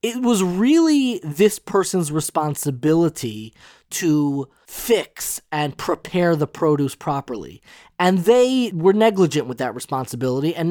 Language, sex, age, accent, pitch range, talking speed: English, male, 20-39, American, 145-195 Hz, 120 wpm